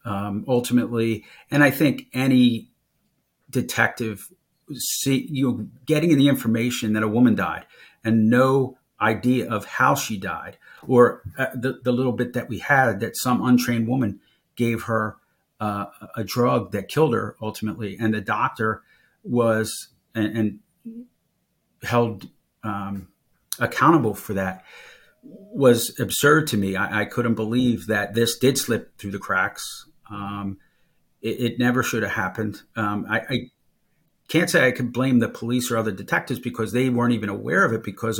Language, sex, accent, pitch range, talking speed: English, male, American, 105-125 Hz, 155 wpm